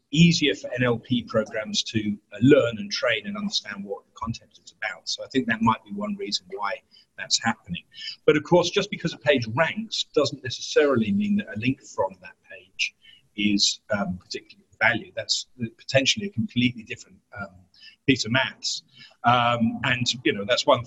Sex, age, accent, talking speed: male, 40-59, British, 180 wpm